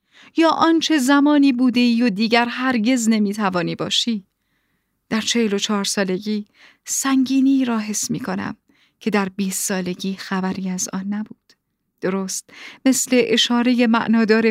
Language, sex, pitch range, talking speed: Persian, female, 200-260 Hz, 135 wpm